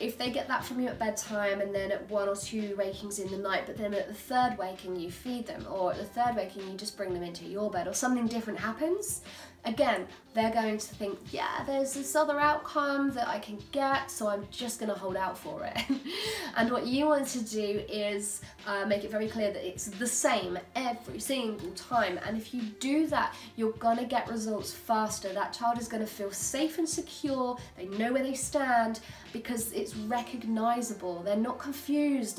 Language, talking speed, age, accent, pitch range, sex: English, 210 wpm, 20-39, British, 205-270 Hz, female